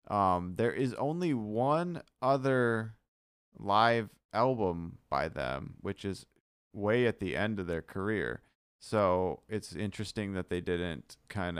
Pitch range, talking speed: 90-115 Hz, 135 wpm